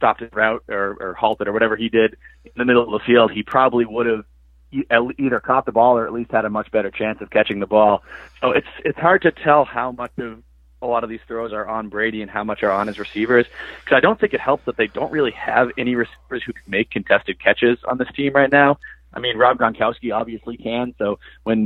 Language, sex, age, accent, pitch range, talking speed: English, male, 30-49, American, 105-120 Hz, 250 wpm